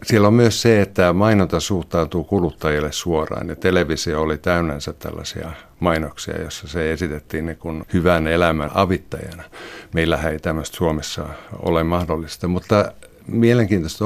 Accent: native